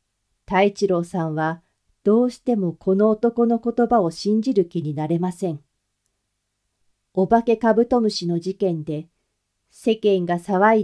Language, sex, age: Japanese, female, 40-59